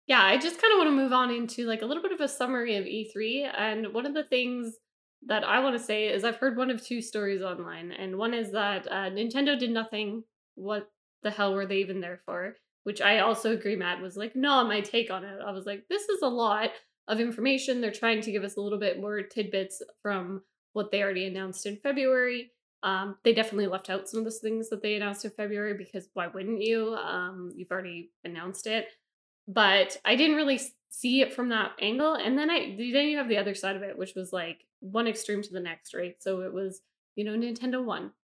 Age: 10-29